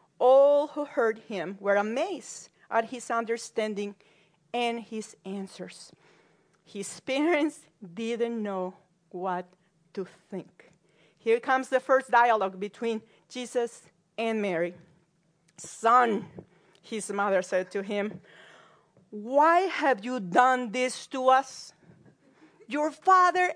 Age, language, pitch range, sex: 40-59, English, 190-275 Hz, female